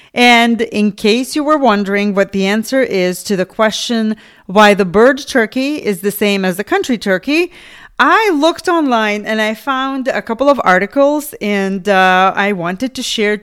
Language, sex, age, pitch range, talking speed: English, female, 40-59, 200-265 Hz, 180 wpm